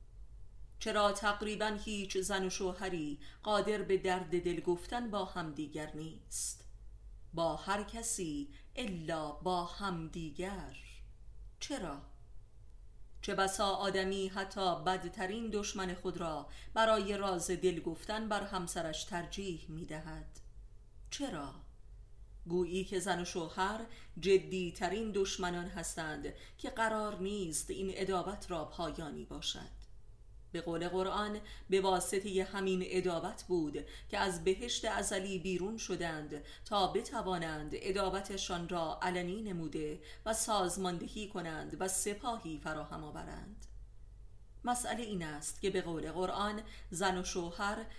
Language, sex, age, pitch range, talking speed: Persian, female, 40-59, 160-195 Hz, 120 wpm